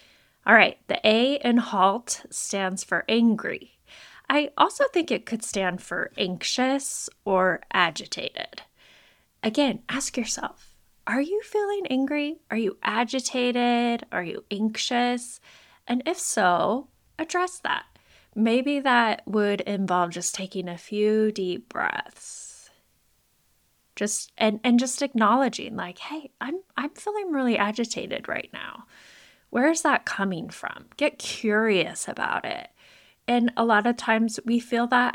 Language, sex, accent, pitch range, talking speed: English, female, American, 205-280 Hz, 135 wpm